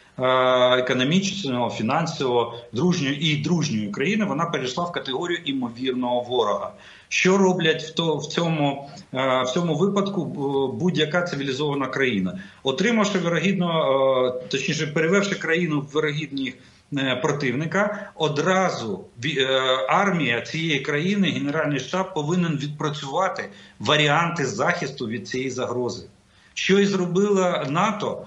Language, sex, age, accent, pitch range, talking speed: Russian, male, 50-69, native, 135-180 Hz, 105 wpm